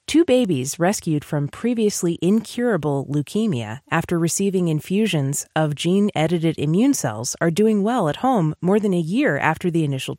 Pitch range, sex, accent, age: 145-200 Hz, female, American, 30-49